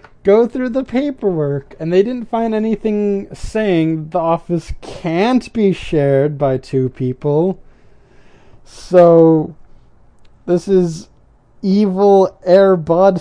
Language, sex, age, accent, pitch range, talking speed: English, male, 20-39, American, 130-185 Hz, 105 wpm